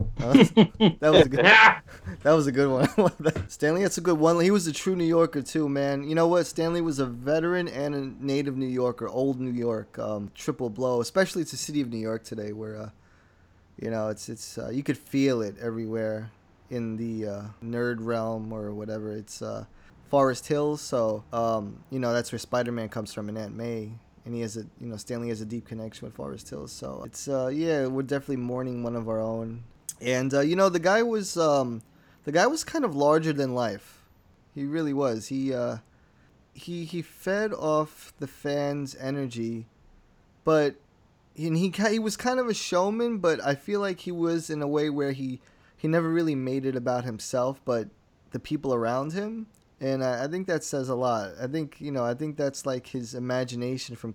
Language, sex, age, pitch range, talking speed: English, male, 20-39, 115-155 Hz, 210 wpm